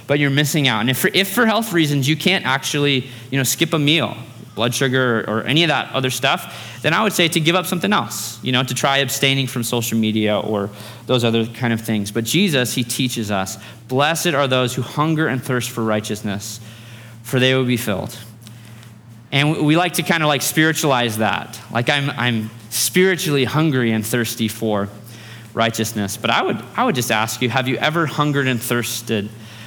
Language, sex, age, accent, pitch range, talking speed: English, male, 20-39, American, 110-140 Hz, 205 wpm